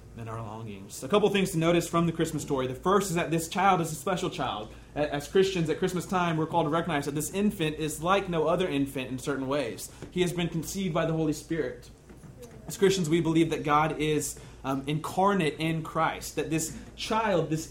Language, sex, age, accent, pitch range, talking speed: English, male, 30-49, American, 140-175 Hz, 220 wpm